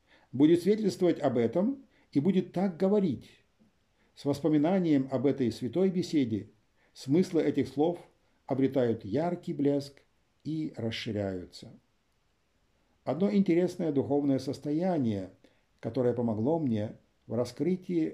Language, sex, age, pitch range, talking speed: Ukrainian, male, 50-69, 115-165 Hz, 105 wpm